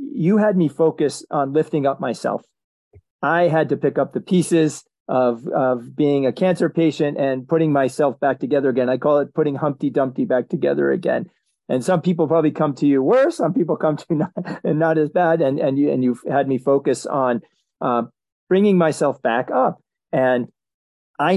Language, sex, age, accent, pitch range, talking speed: English, male, 40-59, American, 130-160 Hz, 195 wpm